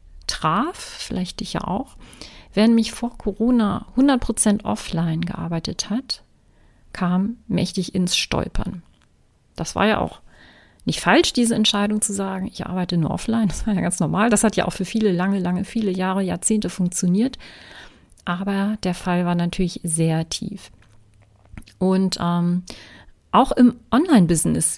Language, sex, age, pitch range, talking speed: German, female, 40-59, 175-225 Hz, 145 wpm